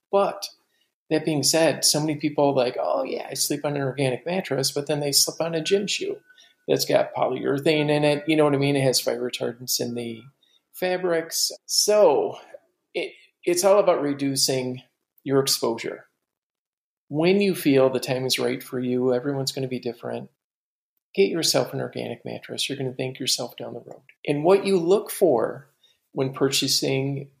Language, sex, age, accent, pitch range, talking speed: English, male, 40-59, American, 130-165 Hz, 185 wpm